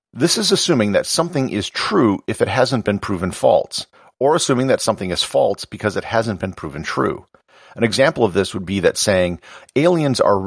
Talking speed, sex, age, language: 200 wpm, male, 50-69, English